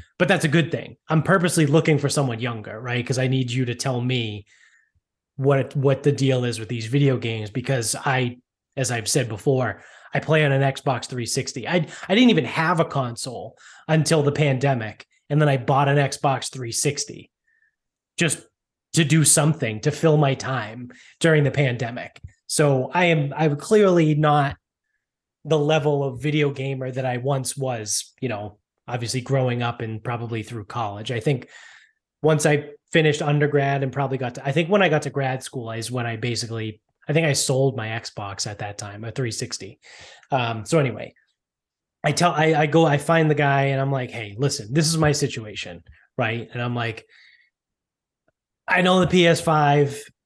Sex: male